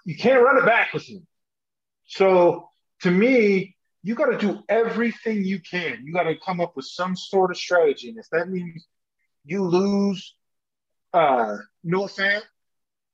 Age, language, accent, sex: 30-49, English, American, male